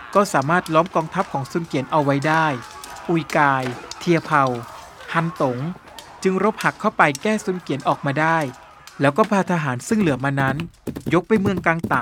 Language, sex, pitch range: Thai, male, 140-190 Hz